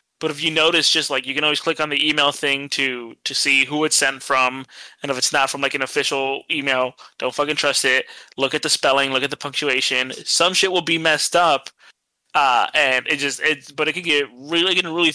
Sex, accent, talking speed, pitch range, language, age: male, American, 240 wpm, 135-165 Hz, English, 20-39